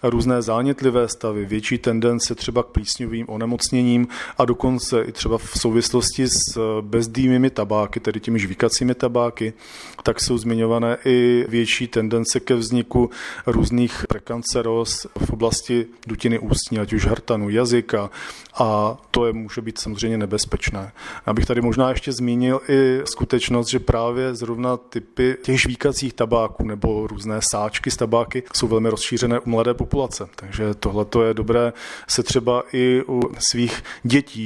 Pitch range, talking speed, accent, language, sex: 110-125 Hz, 145 wpm, native, Czech, male